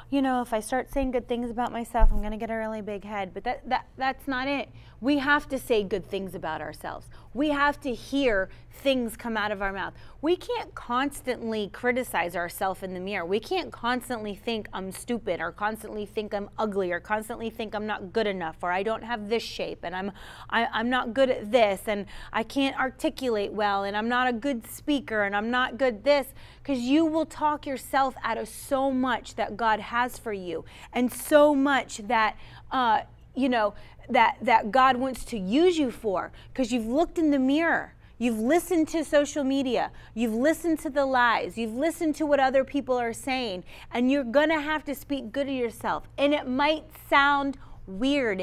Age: 30-49